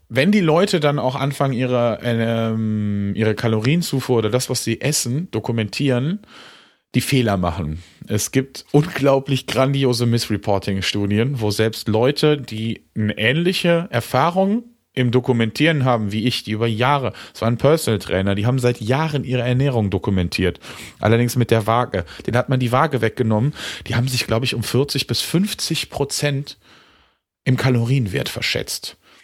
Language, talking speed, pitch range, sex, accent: German, 155 wpm, 110-135 Hz, male, German